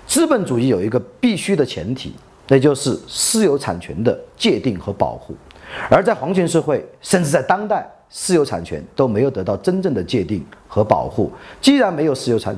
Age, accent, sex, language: 40-59, native, male, Chinese